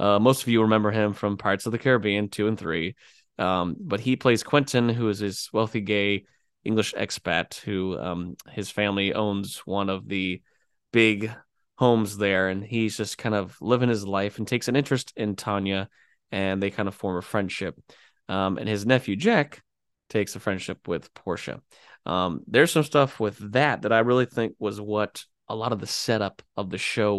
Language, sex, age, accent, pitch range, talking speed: English, male, 20-39, American, 100-120 Hz, 190 wpm